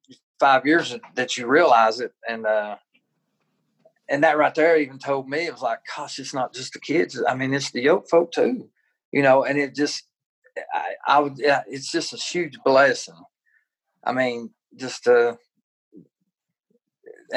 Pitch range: 115-150 Hz